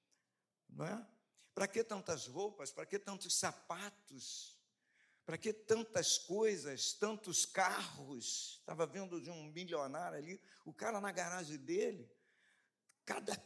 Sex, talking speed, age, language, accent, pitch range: male, 120 wpm, 50-69, Portuguese, Brazilian, 180-245 Hz